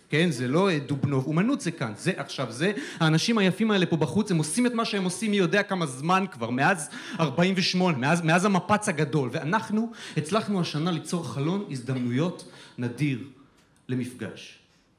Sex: male